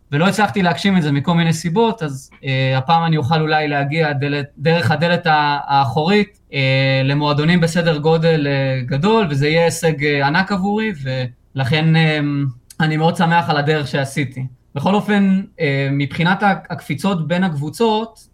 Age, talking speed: 20-39, 150 wpm